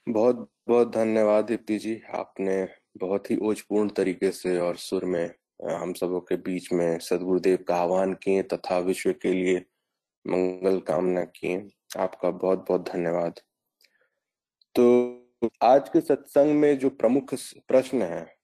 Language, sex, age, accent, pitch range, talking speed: Hindi, male, 20-39, native, 90-125 Hz, 140 wpm